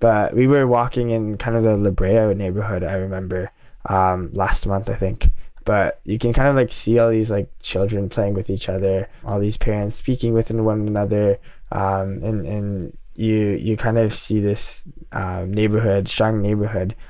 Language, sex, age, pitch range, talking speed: English, male, 10-29, 95-110 Hz, 185 wpm